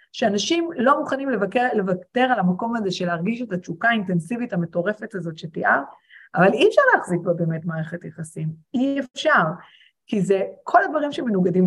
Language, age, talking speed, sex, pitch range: Hebrew, 30-49, 160 wpm, female, 175-220 Hz